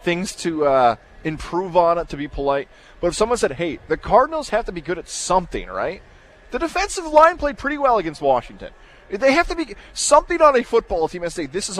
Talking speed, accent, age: 225 wpm, American, 30-49